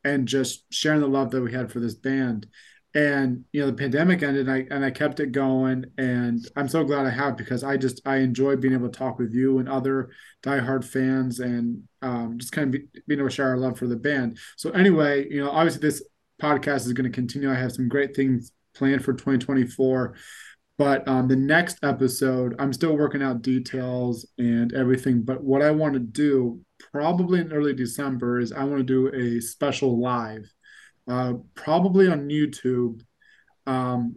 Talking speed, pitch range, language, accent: 200 wpm, 125-140 Hz, English, American